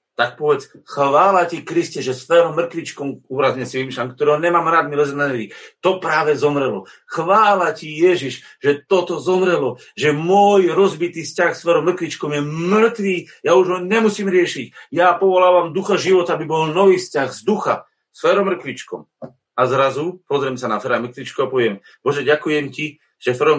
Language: Slovak